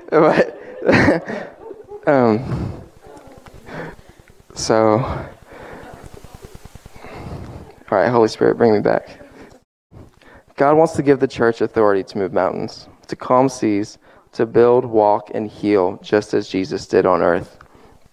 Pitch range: 110-135 Hz